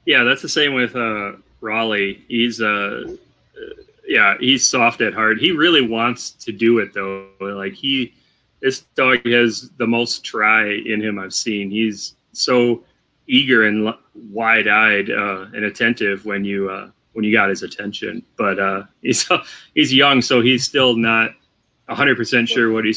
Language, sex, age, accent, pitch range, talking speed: English, male, 30-49, American, 105-120 Hz, 170 wpm